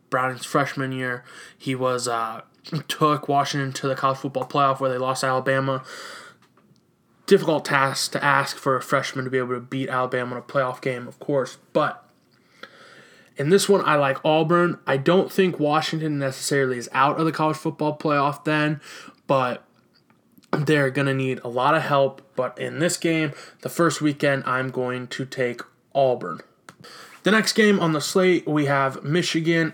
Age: 20-39